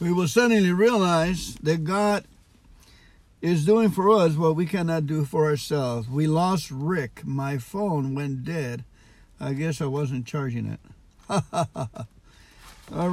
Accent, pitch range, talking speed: American, 150-200 Hz, 135 wpm